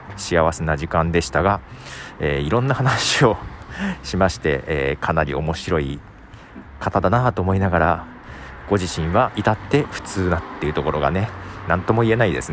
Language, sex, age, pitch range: Japanese, male, 40-59, 80-120 Hz